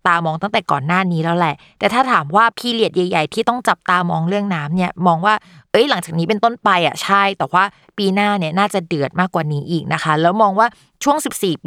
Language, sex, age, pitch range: Thai, female, 20-39, 175-225 Hz